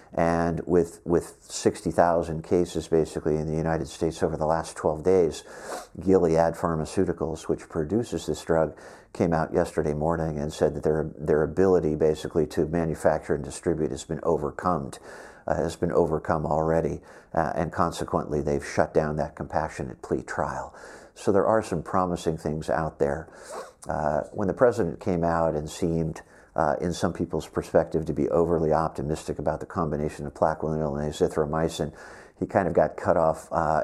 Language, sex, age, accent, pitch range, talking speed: English, male, 50-69, American, 75-85 Hz, 165 wpm